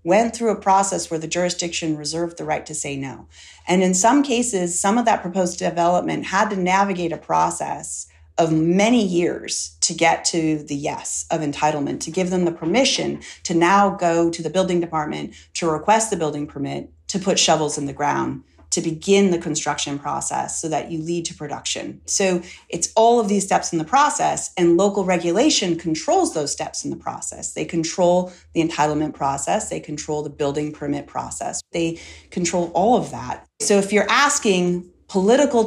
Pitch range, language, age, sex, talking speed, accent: 155-195 Hz, English, 40-59, female, 185 wpm, American